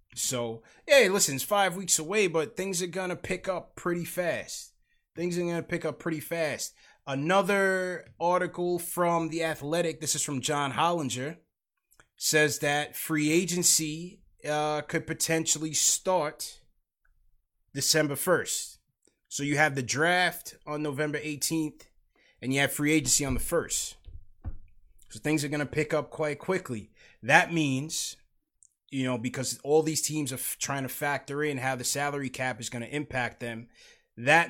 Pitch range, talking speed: 125-160 Hz, 160 wpm